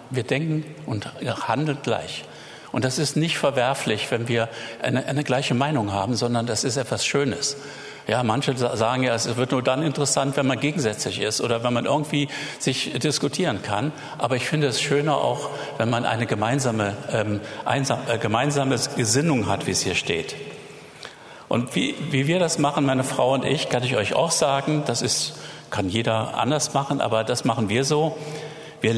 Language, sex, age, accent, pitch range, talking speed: German, male, 50-69, German, 120-150 Hz, 185 wpm